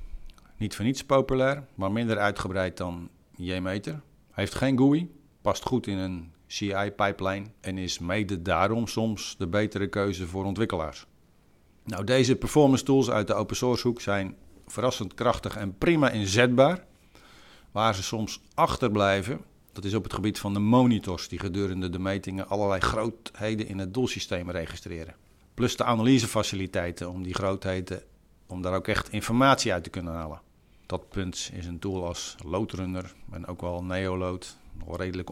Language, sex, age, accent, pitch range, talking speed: Dutch, male, 50-69, Dutch, 95-125 Hz, 155 wpm